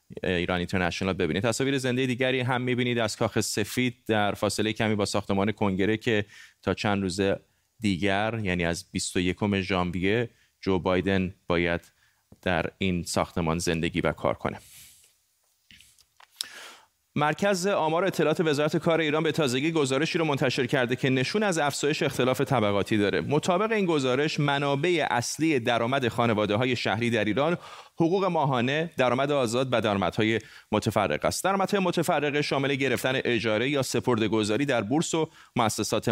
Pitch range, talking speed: 110-150 Hz, 140 wpm